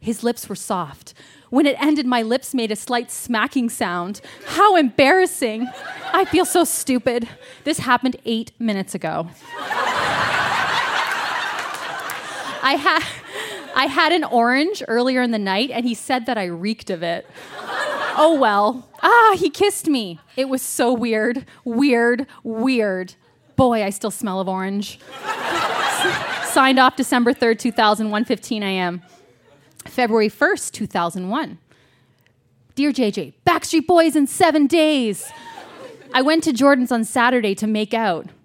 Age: 30-49